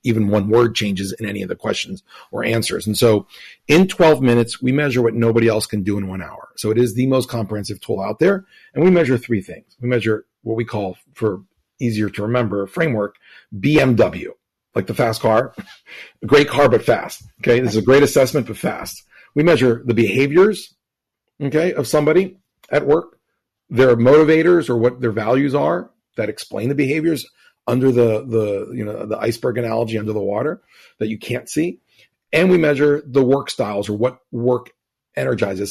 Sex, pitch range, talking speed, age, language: male, 110-135 Hz, 190 wpm, 40-59, English